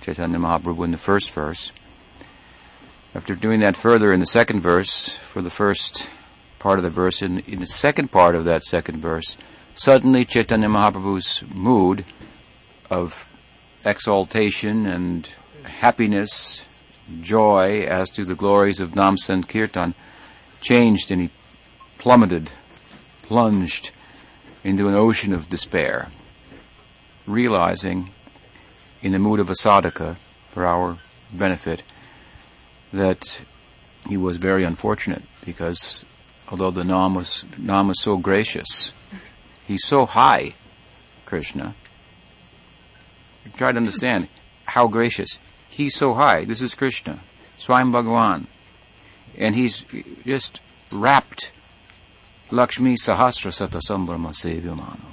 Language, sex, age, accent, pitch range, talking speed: English, male, 60-79, American, 90-110 Hz, 120 wpm